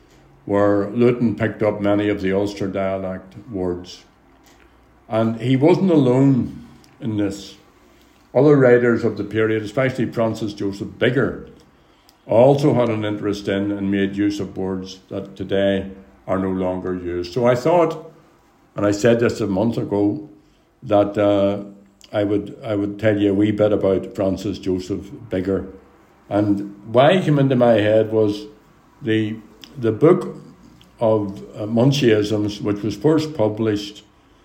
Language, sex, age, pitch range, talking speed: English, male, 60-79, 95-110 Hz, 145 wpm